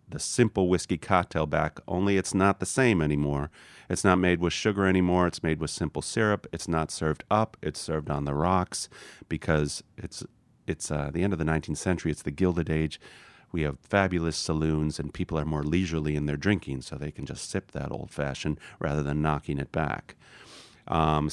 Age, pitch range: 40-59, 75-95 Hz